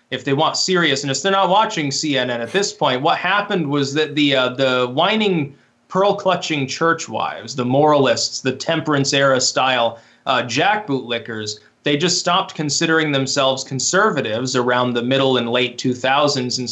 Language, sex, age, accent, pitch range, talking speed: English, male, 20-39, American, 125-160 Hz, 155 wpm